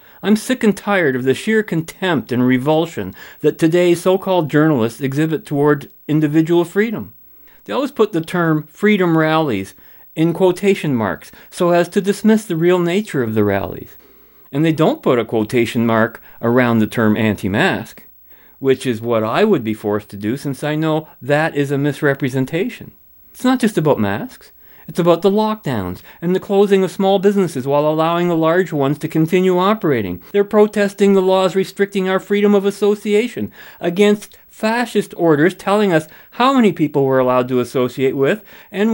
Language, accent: English, American